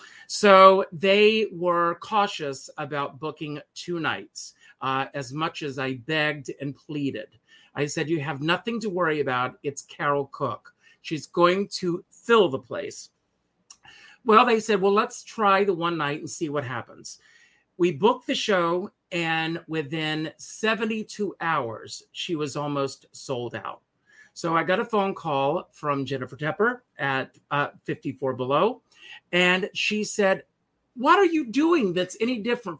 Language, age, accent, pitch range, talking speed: English, 40-59, American, 145-200 Hz, 150 wpm